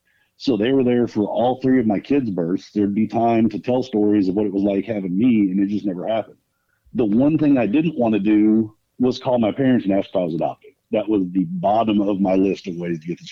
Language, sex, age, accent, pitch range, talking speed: English, male, 50-69, American, 100-130 Hz, 265 wpm